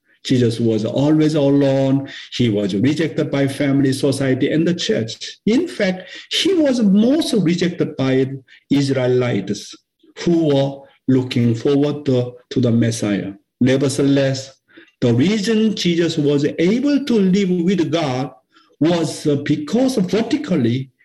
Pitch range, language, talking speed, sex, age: 130-200 Hz, English, 120 wpm, male, 60-79